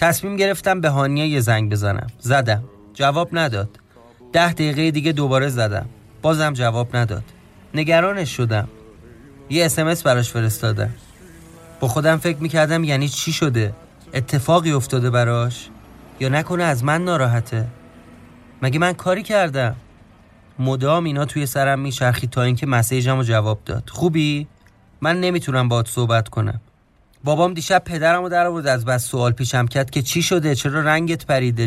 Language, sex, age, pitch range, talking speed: Persian, male, 30-49, 115-160 Hz, 145 wpm